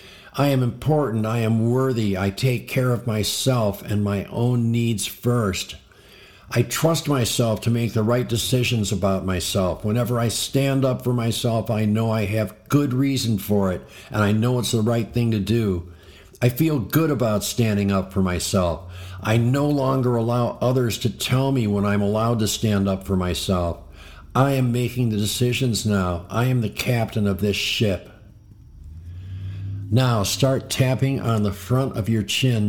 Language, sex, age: English, male, 50-69